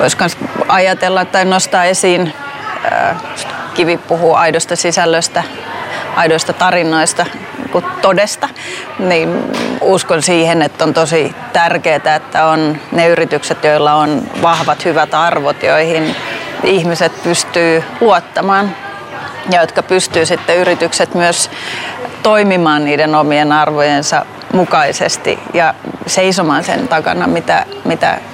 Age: 30-49